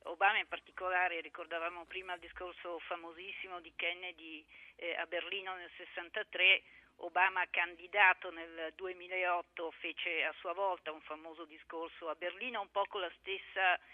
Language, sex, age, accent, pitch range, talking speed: Italian, female, 50-69, native, 170-200 Hz, 140 wpm